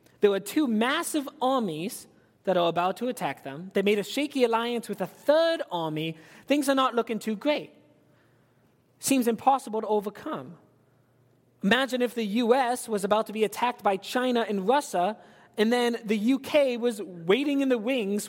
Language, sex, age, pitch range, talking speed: English, male, 20-39, 175-245 Hz, 170 wpm